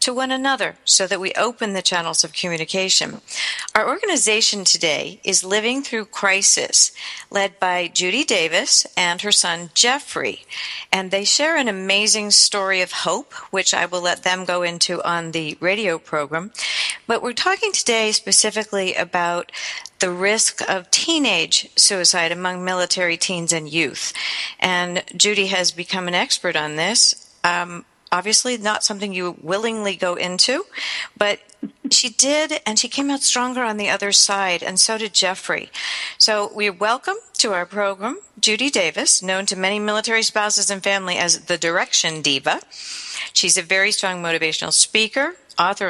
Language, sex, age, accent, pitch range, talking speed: English, female, 50-69, American, 180-220 Hz, 155 wpm